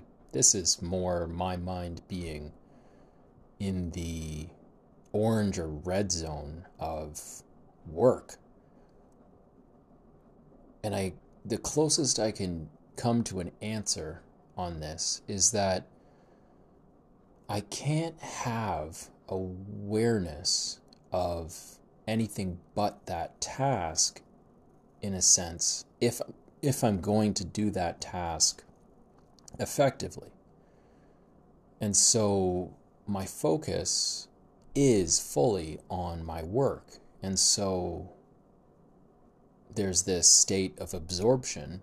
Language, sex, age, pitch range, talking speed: English, male, 30-49, 80-100 Hz, 95 wpm